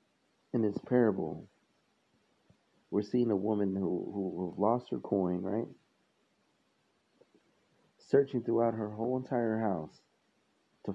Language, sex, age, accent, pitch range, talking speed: English, male, 40-59, American, 100-120 Hz, 110 wpm